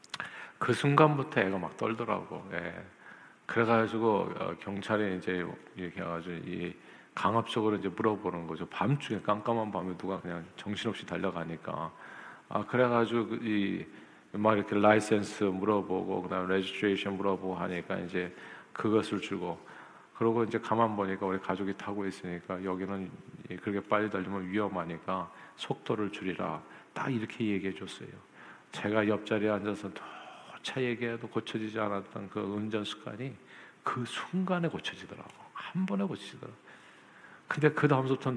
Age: 50-69